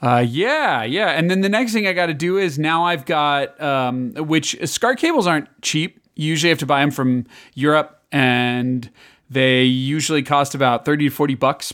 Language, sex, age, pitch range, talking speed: English, male, 30-49, 125-145 Hz, 200 wpm